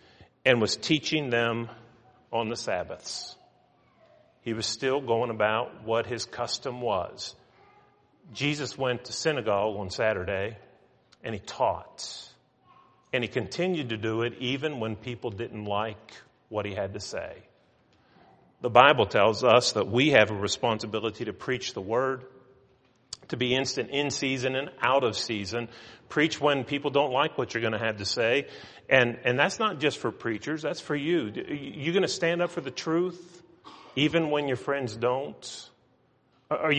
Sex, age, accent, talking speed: male, 40-59, American, 160 wpm